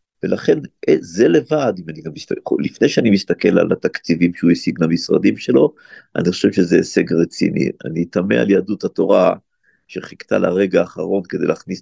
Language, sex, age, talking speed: Hebrew, male, 50-69, 140 wpm